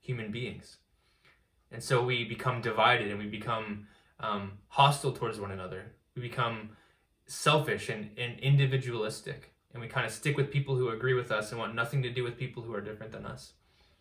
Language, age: English, 20-39